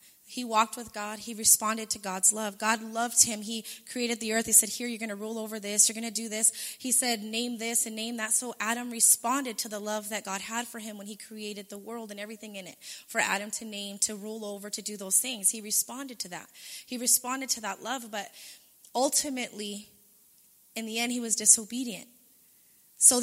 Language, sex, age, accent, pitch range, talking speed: English, female, 20-39, American, 215-245 Hz, 220 wpm